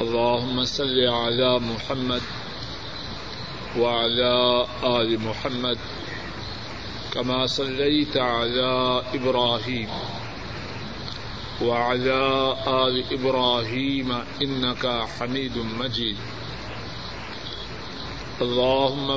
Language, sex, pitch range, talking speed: Urdu, male, 120-140 Hz, 55 wpm